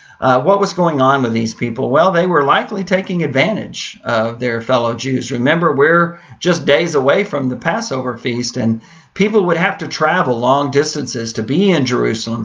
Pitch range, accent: 120-140 Hz, American